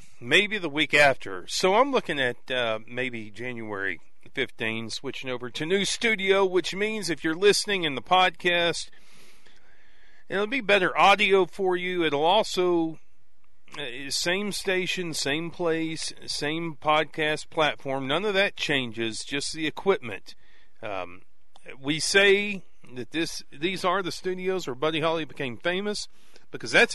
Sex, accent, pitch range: male, American, 135-190 Hz